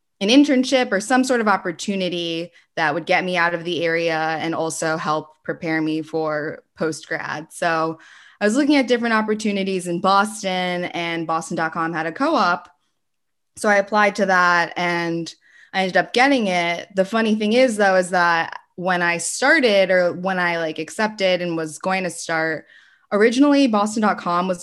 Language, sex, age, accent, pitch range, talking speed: English, female, 20-39, American, 165-200 Hz, 170 wpm